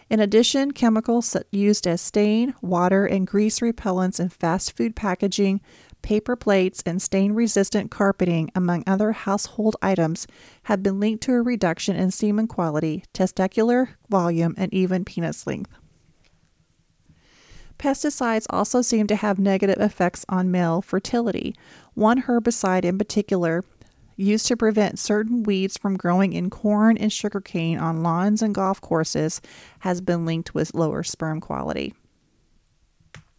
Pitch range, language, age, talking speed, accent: 180-215 Hz, English, 40-59, 135 wpm, American